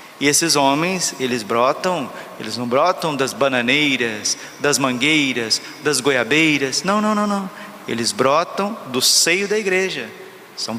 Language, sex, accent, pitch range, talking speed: Portuguese, male, Brazilian, 135-155 Hz, 140 wpm